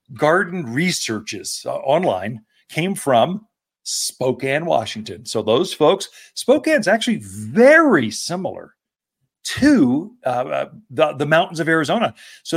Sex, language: male, English